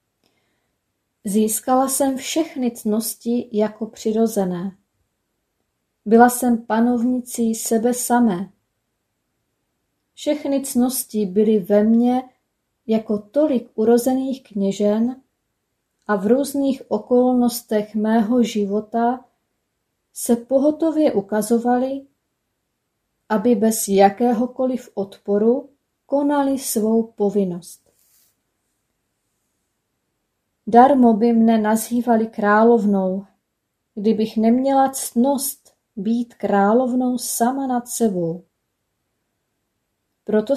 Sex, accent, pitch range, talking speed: female, native, 210-250 Hz, 75 wpm